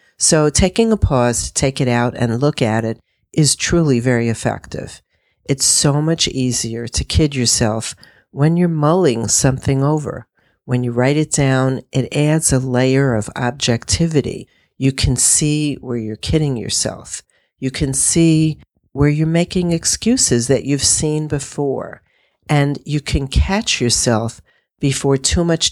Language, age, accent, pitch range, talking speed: English, 50-69, American, 120-155 Hz, 150 wpm